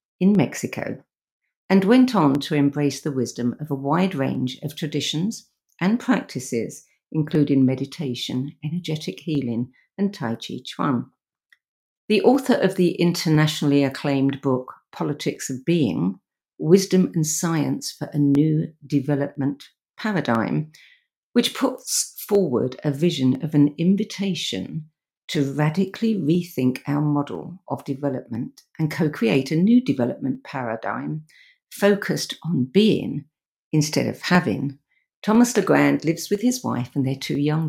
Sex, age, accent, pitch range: female, 50-69, British, 140-180 Hz